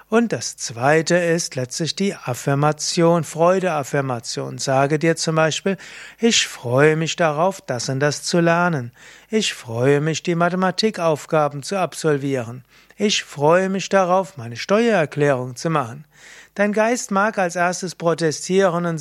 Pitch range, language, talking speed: 145-180 Hz, German, 135 wpm